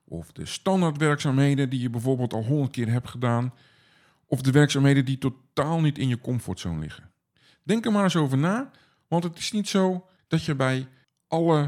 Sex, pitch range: male, 125-170 Hz